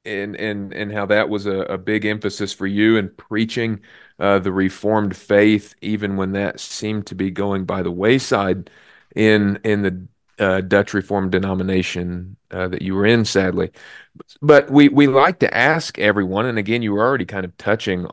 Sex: male